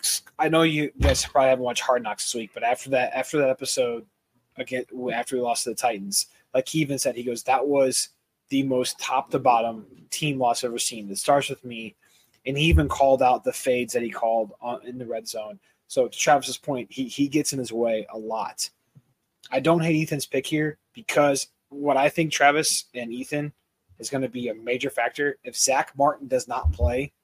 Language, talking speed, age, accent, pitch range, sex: English, 215 wpm, 20-39, American, 115-140 Hz, male